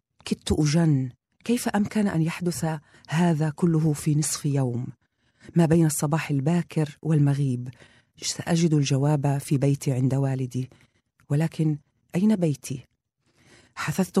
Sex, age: female, 40-59